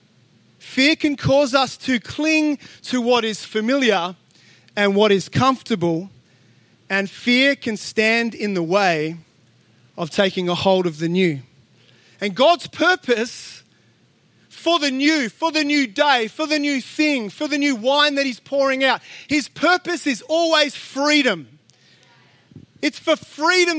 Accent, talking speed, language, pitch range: Australian, 145 wpm, English, 185-285 Hz